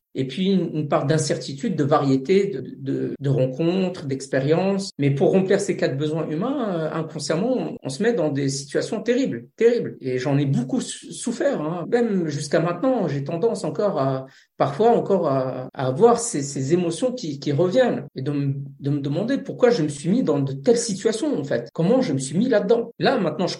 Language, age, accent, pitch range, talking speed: French, 50-69, French, 140-205 Hz, 200 wpm